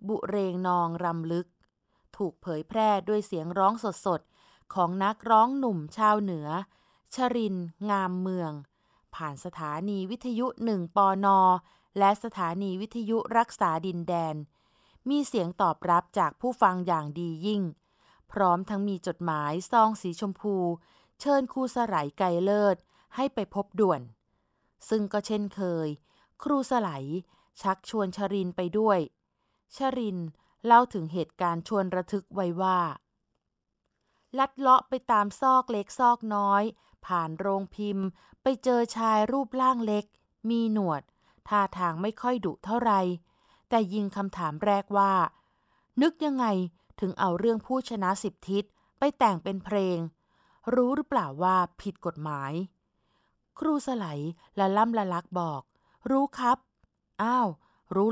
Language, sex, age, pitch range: Thai, female, 20-39, 175-225 Hz